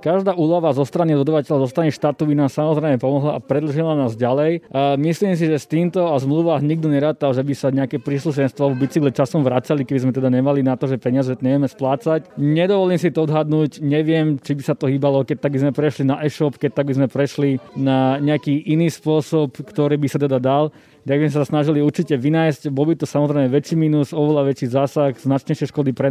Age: 20-39